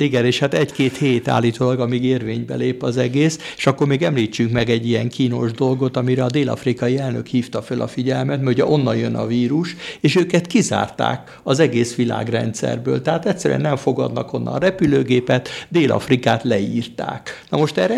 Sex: male